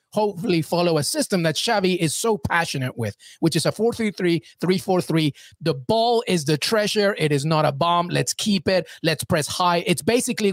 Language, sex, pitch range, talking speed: English, male, 155-210 Hz, 190 wpm